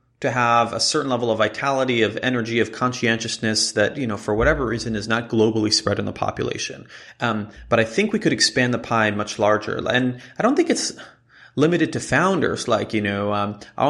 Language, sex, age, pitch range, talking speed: English, male, 30-49, 110-130 Hz, 205 wpm